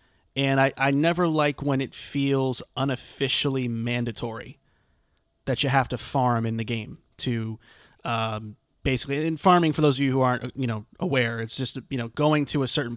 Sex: male